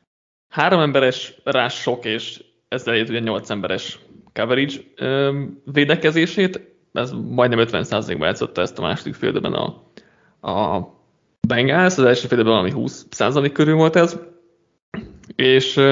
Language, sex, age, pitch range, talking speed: Hungarian, male, 20-39, 125-160 Hz, 115 wpm